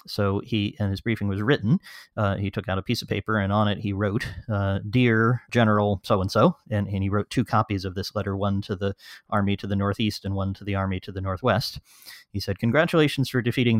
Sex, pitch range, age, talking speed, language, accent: male, 100-115 Hz, 30-49, 235 wpm, English, American